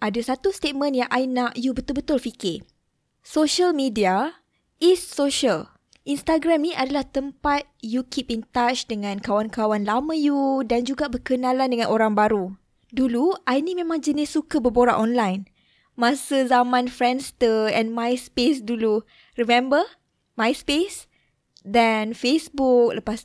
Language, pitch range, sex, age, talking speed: Malay, 225-280 Hz, female, 20-39, 130 wpm